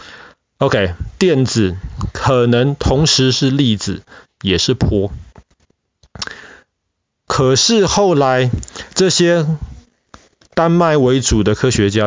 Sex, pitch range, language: male, 105-150 Hz, Chinese